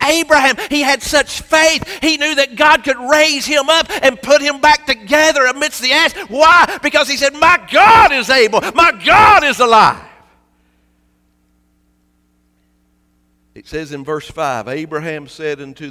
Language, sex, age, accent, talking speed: English, male, 50-69, American, 155 wpm